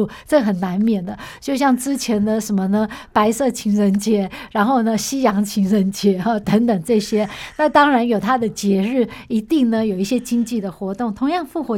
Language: Chinese